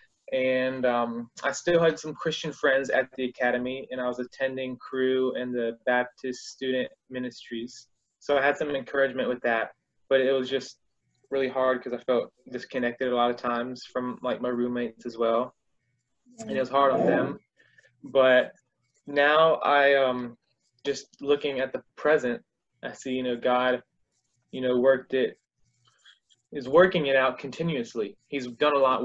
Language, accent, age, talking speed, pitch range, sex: English, American, 20-39, 170 wpm, 125-135 Hz, male